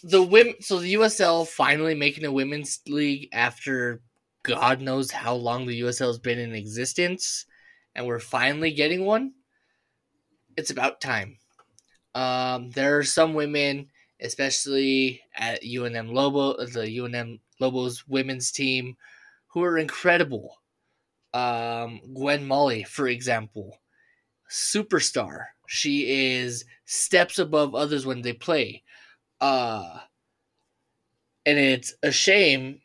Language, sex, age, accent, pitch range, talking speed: English, male, 20-39, American, 125-165 Hz, 120 wpm